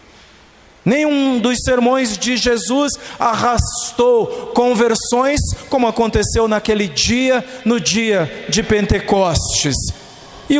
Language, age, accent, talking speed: Portuguese, 50-69, Brazilian, 90 wpm